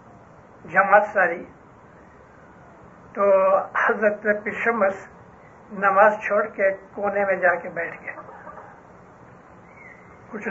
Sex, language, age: male, English, 60-79